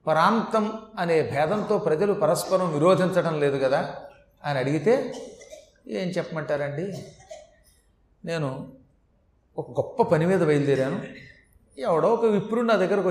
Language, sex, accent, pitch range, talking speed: Telugu, male, native, 160-210 Hz, 105 wpm